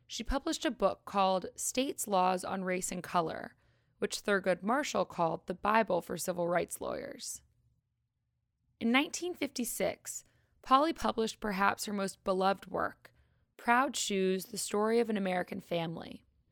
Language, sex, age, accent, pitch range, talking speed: English, female, 20-39, American, 185-250 Hz, 140 wpm